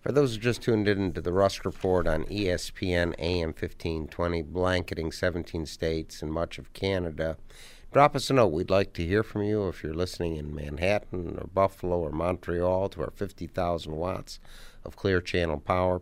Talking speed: 180 wpm